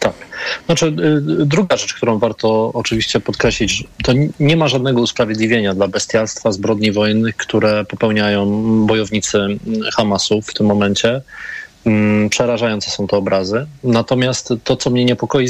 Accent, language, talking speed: native, Polish, 135 wpm